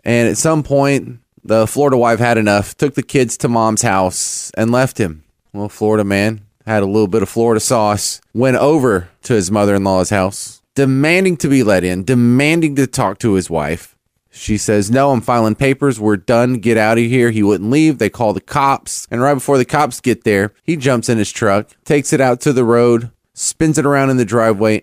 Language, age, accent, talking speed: English, 30-49, American, 215 wpm